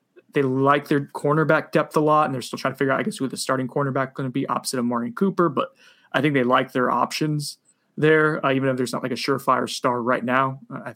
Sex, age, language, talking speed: male, 20-39, English, 270 wpm